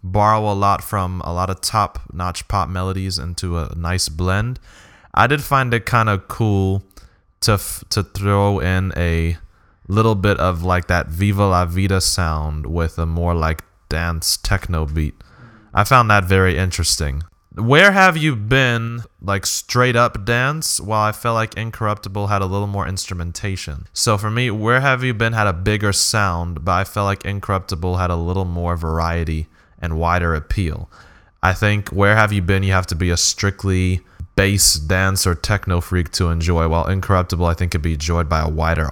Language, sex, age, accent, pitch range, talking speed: English, male, 20-39, American, 85-105 Hz, 185 wpm